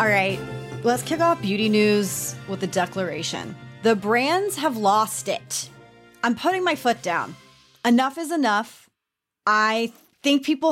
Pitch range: 195-250 Hz